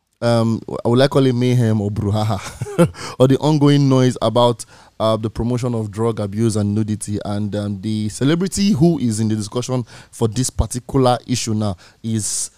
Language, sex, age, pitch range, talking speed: English, male, 20-39, 105-125 Hz, 175 wpm